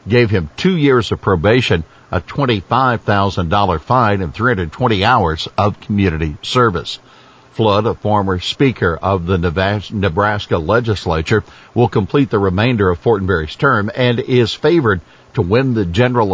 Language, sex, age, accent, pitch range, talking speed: English, male, 60-79, American, 95-125 Hz, 155 wpm